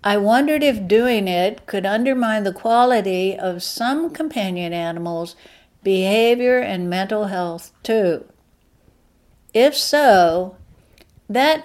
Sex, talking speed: female, 110 wpm